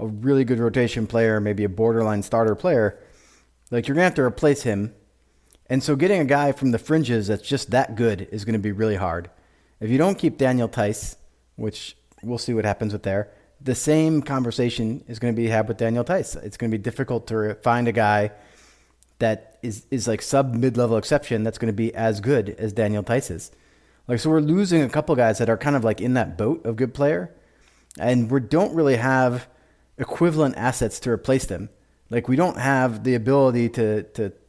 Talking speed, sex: 210 wpm, male